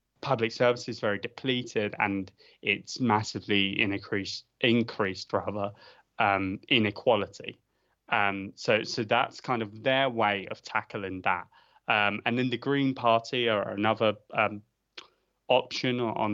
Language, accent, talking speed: English, British, 130 wpm